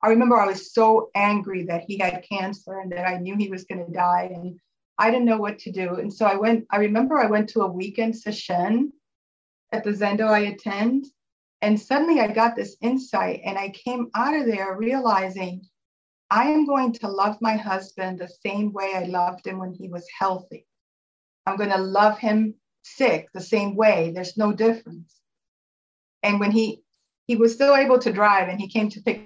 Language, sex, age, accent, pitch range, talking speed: English, female, 40-59, American, 190-225 Hz, 205 wpm